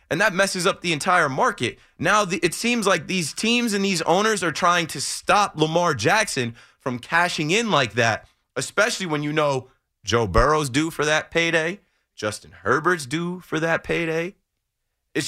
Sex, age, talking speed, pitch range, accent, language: male, 30-49, 175 wpm, 125-185 Hz, American, English